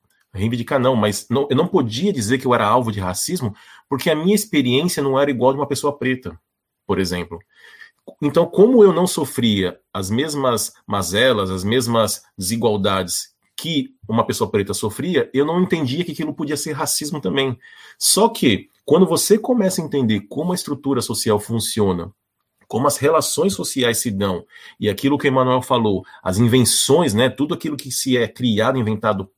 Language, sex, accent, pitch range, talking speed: Portuguese, male, Brazilian, 105-150 Hz, 175 wpm